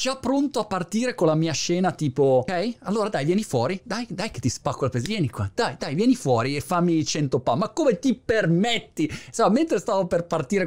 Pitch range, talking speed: 130-205 Hz, 230 wpm